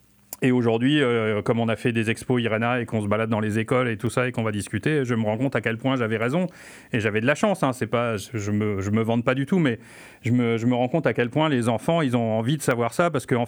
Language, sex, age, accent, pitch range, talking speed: French, male, 30-49, French, 115-135 Hz, 310 wpm